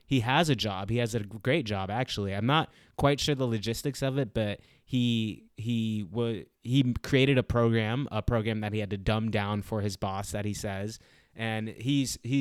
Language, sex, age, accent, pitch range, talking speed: English, male, 20-39, American, 105-130 Hz, 205 wpm